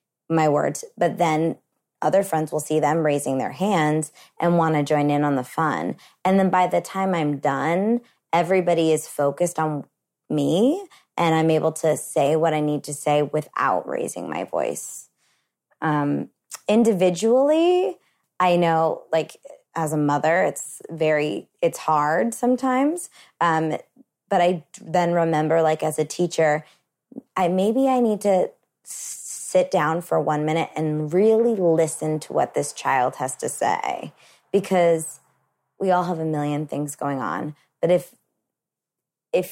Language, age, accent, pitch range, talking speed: English, 20-39, American, 155-190 Hz, 150 wpm